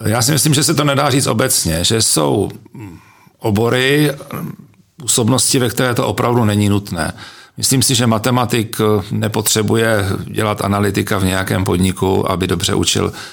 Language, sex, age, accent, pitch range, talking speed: Czech, male, 40-59, native, 90-110 Hz, 145 wpm